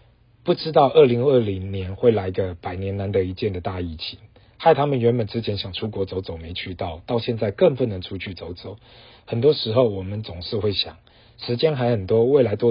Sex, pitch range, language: male, 95-115 Hz, Chinese